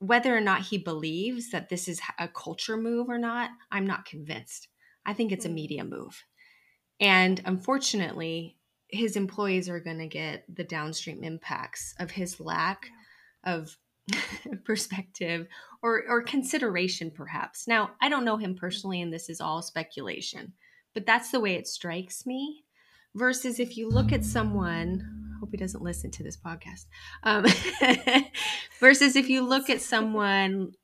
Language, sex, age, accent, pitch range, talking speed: English, female, 20-39, American, 165-225 Hz, 155 wpm